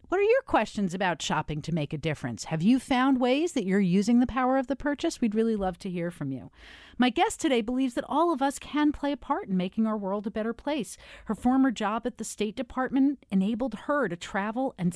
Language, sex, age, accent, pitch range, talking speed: English, female, 40-59, American, 175-270 Hz, 240 wpm